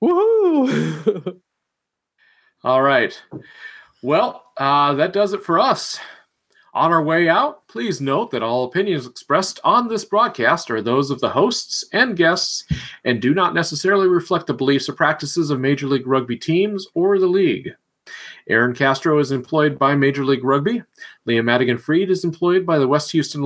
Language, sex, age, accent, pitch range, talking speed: English, male, 40-59, American, 145-215 Hz, 160 wpm